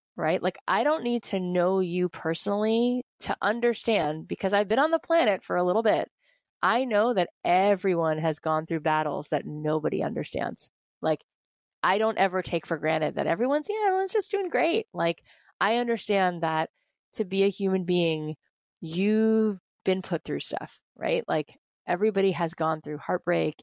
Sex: female